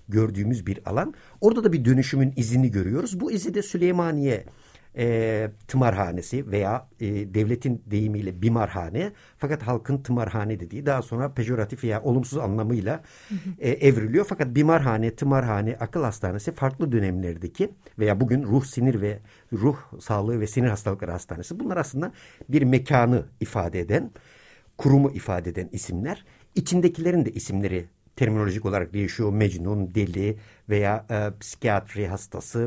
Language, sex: Turkish, male